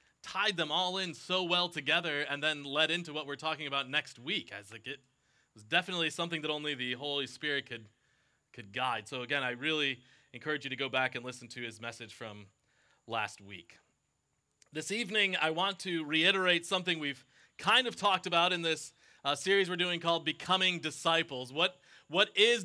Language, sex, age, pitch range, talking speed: English, male, 30-49, 145-185 Hz, 185 wpm